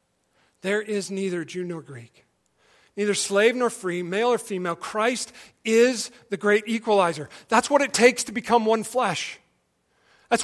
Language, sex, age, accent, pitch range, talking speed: English, male, 40-59, American, 195-240 Hz, 155 wpm